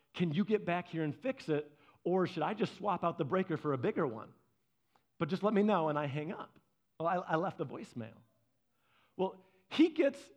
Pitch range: 150-220 Hz